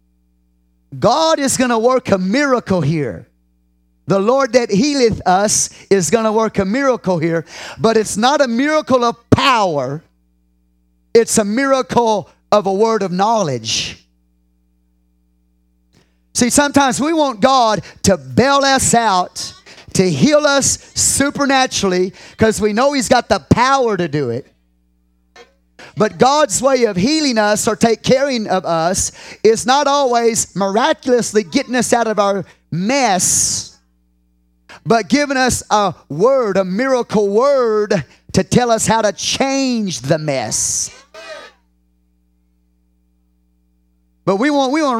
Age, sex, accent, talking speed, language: 40-59, male, American, 135 wpm, English